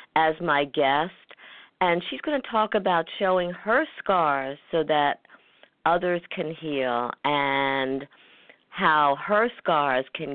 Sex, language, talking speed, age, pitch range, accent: female, English, 130 wpm, 50-69, 130-165 Hz, American